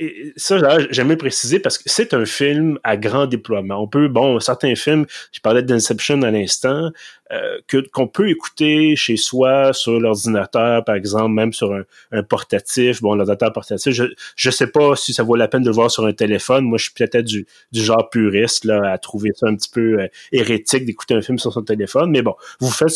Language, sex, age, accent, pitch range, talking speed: French, male, 30-49, Canadian, 110-145 Hz, 215 wpm